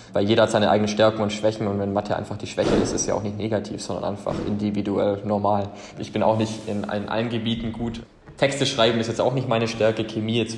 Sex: male